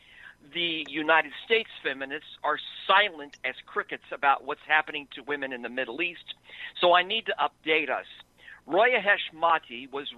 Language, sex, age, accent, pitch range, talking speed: English, male, 50-69, American, 140-200 Hz, 155 wpm